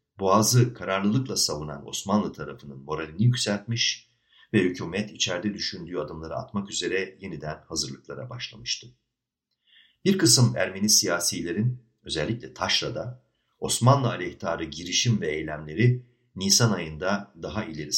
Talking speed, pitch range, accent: 105 wpm, 85-120 Hz, native